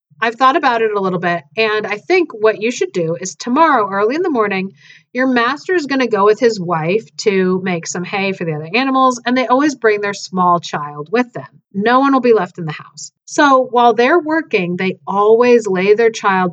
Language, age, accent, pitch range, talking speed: English, 40-59, American, 190-260 Hz, 230 wpm